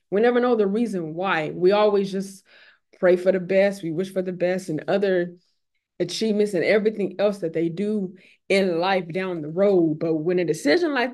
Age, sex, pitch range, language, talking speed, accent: 20-39, female, 175-215 Hz, English, 200 wpm, American